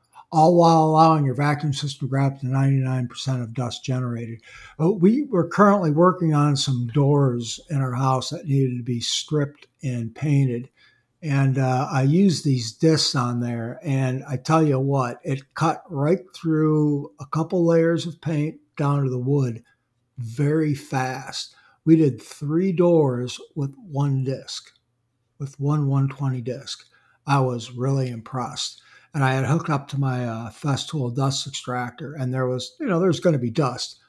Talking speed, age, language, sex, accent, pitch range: 165 wpm, 60-79, English, male, American, 125-155 Hz